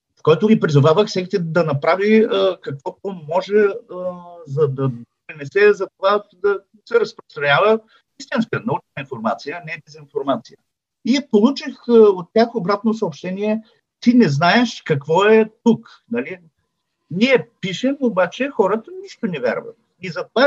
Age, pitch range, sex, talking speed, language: 50-69, 160-220 Hz, male, 135 wpm, Bulgarian